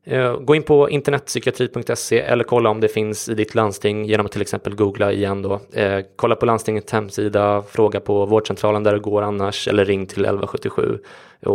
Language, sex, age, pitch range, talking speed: English, male, 20-39, 100-115 Hz, 175 wpm